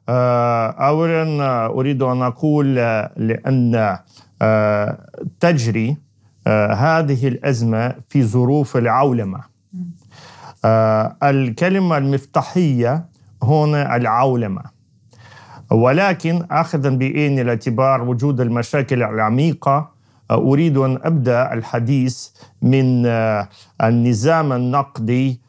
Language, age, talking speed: Arabic, 40-59, 70 wpm